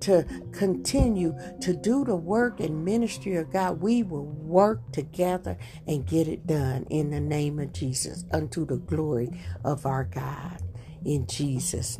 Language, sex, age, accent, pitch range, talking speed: English, female, 60-79, American, 145-200 Hz, 155 wpm